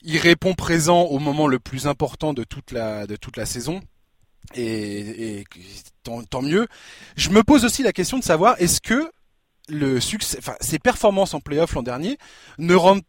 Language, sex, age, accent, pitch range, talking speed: French, male, 20-39, French, 135-185 Hz, 185 wpm